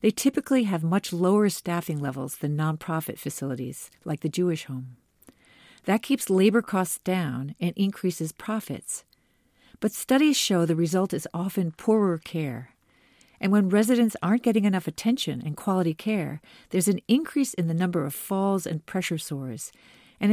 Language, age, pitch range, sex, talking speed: English, 50-69, 155-215 Hz, female, 155 wpm